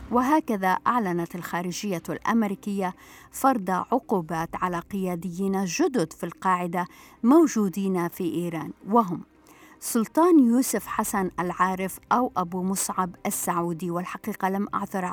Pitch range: 175-215 Hz